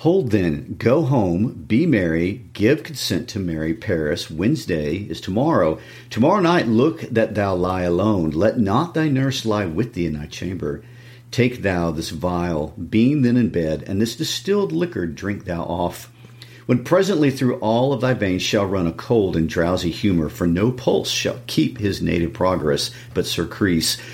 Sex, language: male, English